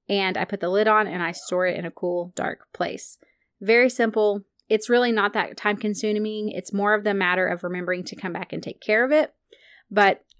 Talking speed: 225 wpm